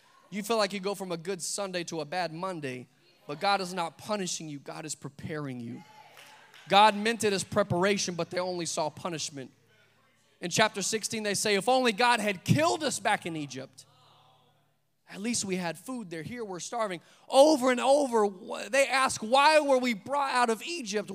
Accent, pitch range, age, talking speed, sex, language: American, 165-225 Hz, 20-39, 195 wpm, male, English